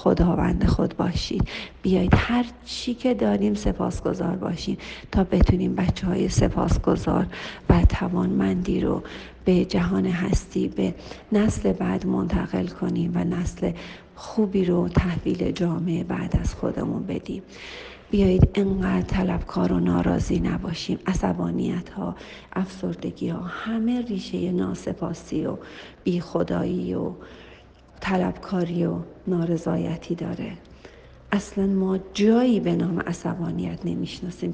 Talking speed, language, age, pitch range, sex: 110 wpm, Persian, 40-59, 165-205 Hz, female